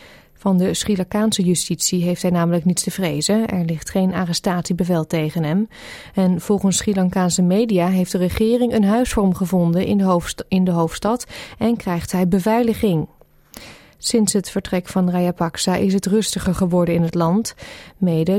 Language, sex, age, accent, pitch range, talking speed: Dutch, female, 20-39, Dutch, 175-210 Hz, 155 wpm